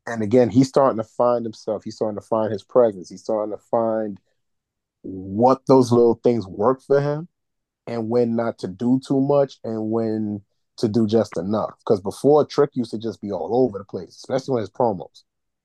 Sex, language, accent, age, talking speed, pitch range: male, English, American, 30-49, 200 wpm, 105-125 Hz